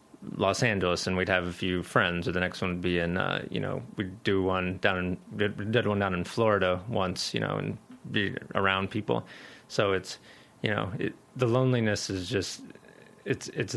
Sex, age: male, 30-49